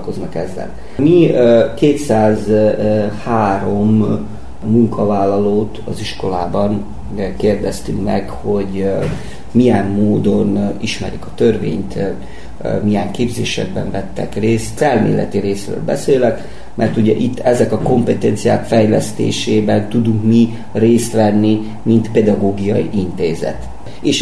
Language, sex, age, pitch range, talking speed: Hungarian, male, 30-49, 105-115 Hz, 90 wpm